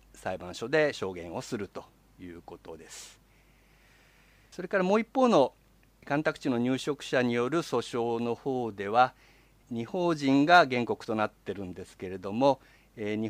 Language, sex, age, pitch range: Japanese, male, 50-69, 110-150 Hz